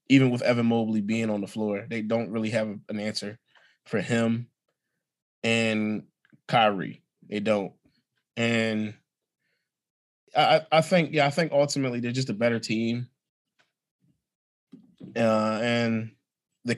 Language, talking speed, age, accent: English, 130 wpm, 20-39, American